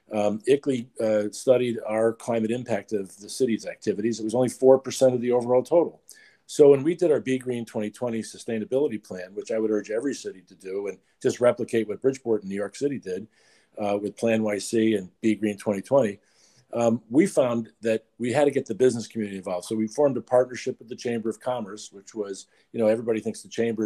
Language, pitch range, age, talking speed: English, 105-125 Hz, 50-69, 215 wpm